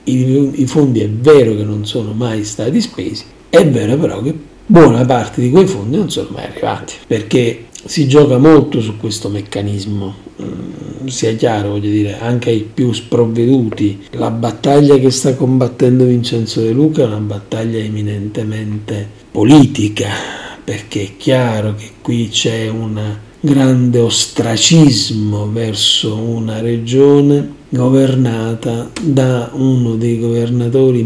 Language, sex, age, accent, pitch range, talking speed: Italian, male, 50-69, native, 105-135 Hz, 130 wpm